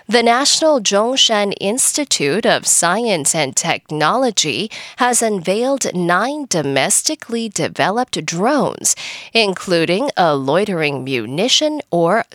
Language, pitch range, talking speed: English, 170-255 Hz, 90 wpm